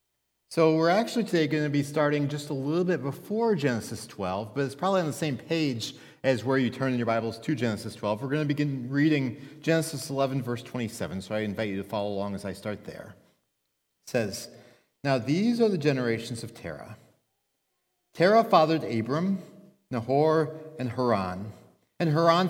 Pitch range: 110-155 Hz